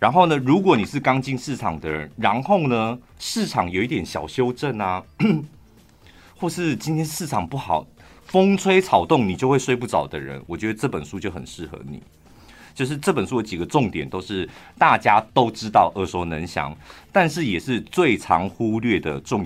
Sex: male